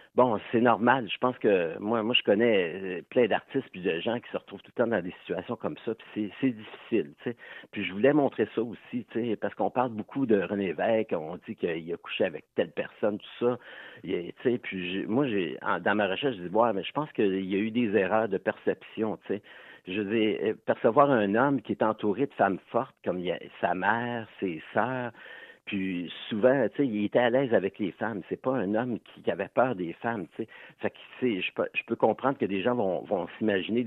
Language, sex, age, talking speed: French, male, 60-79, 230 wpm